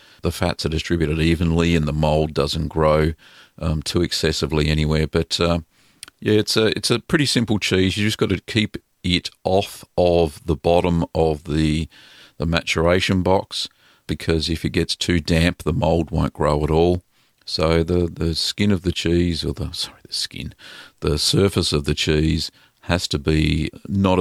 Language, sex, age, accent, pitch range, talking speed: English, male, 50-69, Australian, 75-95 Hz, 180 wpm